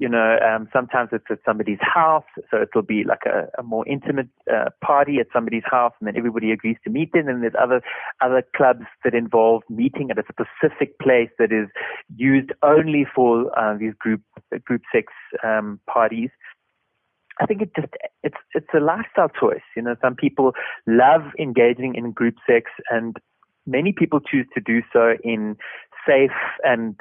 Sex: male